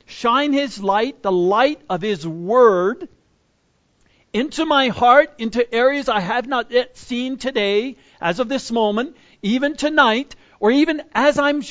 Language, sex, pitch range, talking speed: English, male, 165-275 Hz, 150 wpm